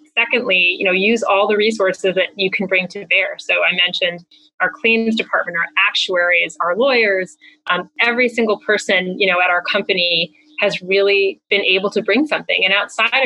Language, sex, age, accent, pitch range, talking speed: English, female, 20-39, American, 185-225 Hz, 185 wpm